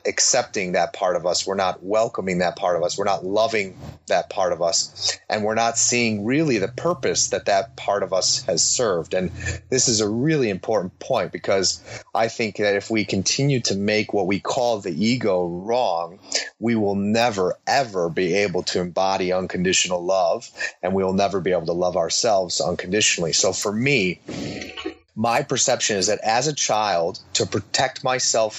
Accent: American